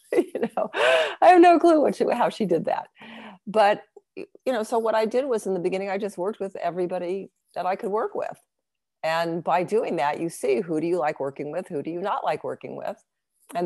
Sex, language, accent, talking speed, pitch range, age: female, English, American, 225 wpm, 155-205 Hz, 50-69